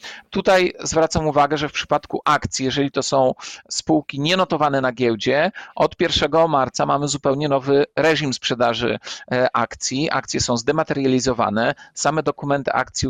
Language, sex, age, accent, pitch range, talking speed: Polish, male, 40-59, native, 140-170 Hz, 135 wpm